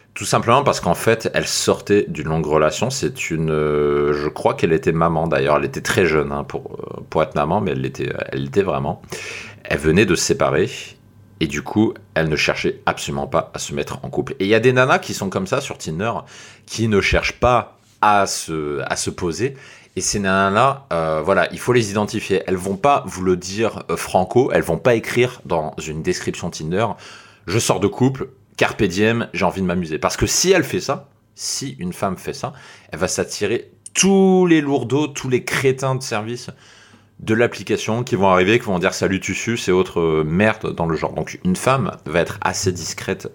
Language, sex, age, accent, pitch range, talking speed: French, male, 30-49, French, 90-120 Hz, 210 wpm